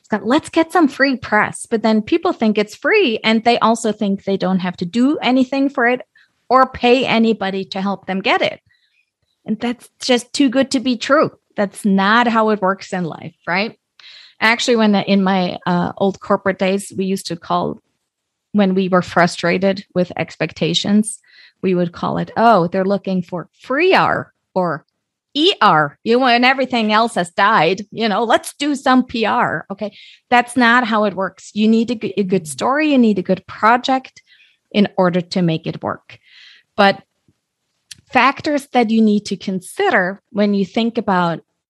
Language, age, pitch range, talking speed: English, 30-49, 185-240 Hz, 180 wpm